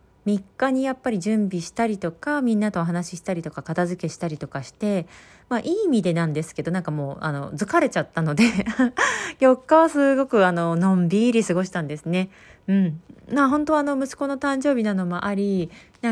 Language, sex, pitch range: Japanese, female, 165-225 Hz